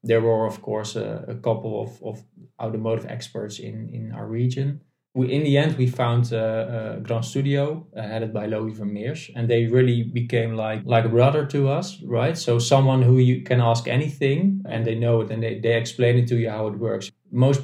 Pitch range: 110-125 Hz